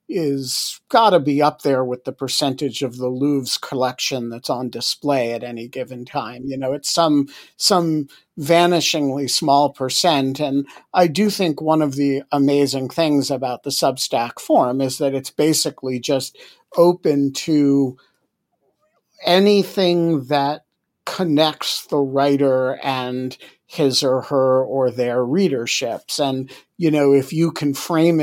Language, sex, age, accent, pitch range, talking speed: English, male, 50-69, American, 130-155 Hz, 140 wpm